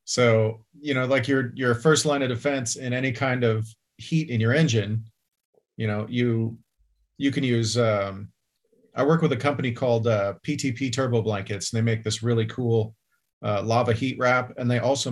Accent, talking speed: American, 190 wpm